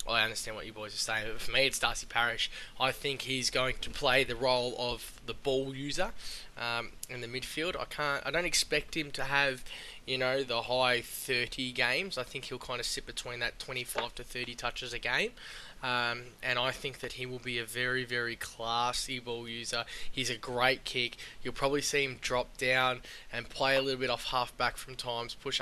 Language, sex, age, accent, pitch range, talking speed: English, male, 10-29, Australian, 115-130 Hz, 220 wpm